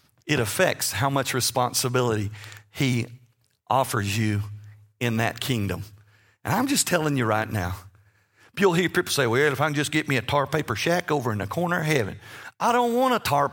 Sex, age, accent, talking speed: male, 50-69, American, 195 wpm